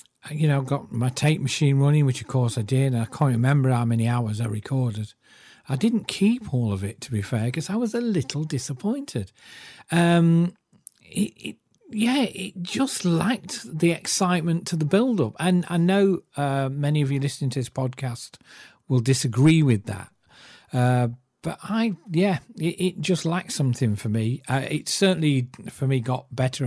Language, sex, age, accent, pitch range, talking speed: English, male, 40-59, British, 120-165 Hz, 185 wpm